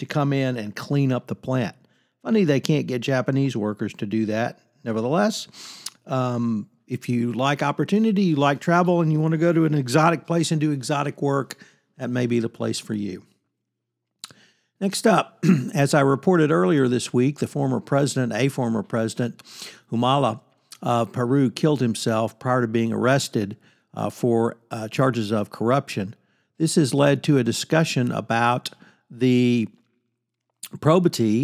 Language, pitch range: English, 115-140 Hz